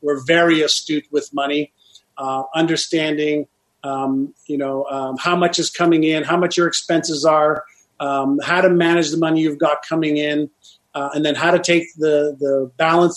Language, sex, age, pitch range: English, male, 40-59, 145-170 Hz